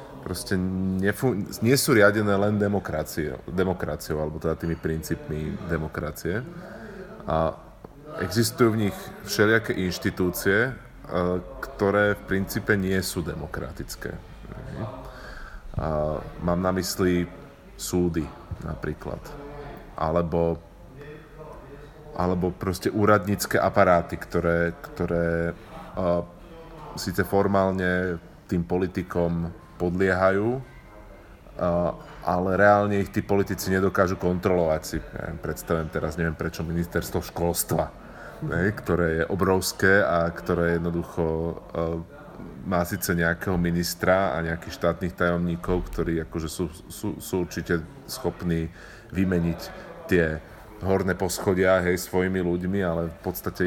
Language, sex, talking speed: Slovak, male, 95 wpm